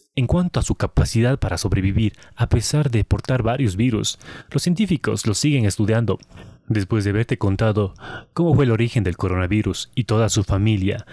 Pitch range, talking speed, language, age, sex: 100-125 Hz, 175 wpm, Spanish, 30-49, male